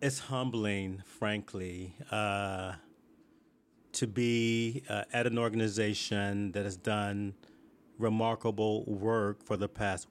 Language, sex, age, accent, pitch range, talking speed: English, male, 40-59, American, 105-120 Hz, 105 wpm